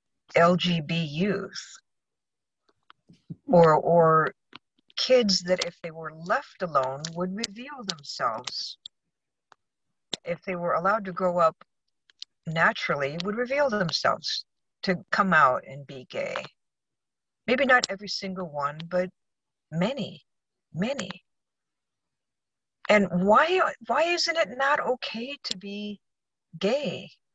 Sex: female